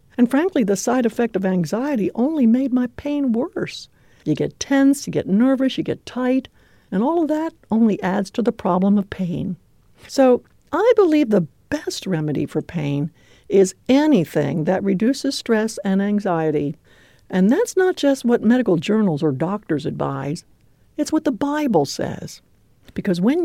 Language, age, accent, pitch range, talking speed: English, 60-79, American, 160-255 Hz, 165 wpm